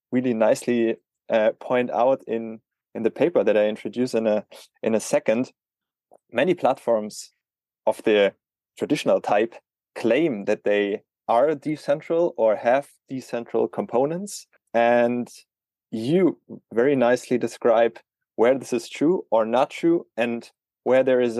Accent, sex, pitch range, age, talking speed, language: German, male, 110-130 Hz, 20-39, 135 wpm, English